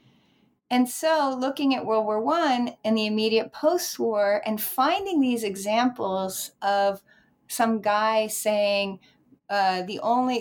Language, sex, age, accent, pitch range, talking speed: English, female, 30-49, American, 215-290 Hz, 125 wpm